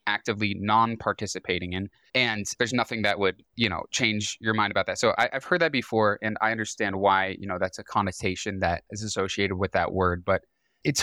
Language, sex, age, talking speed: English, male, 20-39, 200 wpm